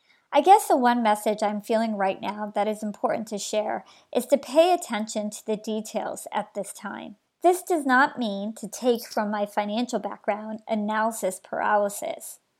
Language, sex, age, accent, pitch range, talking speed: English, male, 40-59, American, 210-260 Hz, 170 wpm